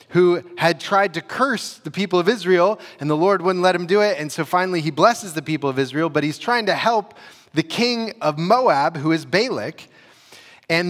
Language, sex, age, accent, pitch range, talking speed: English, male, 30-49, American, 135-180 Hz, 215 wpm